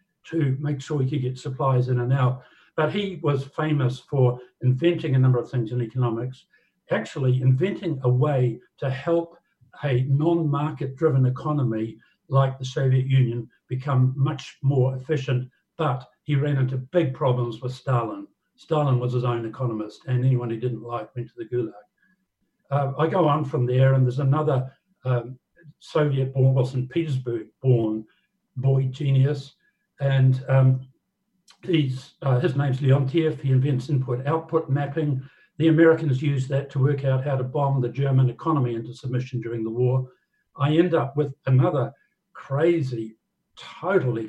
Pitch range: 125-150 Hz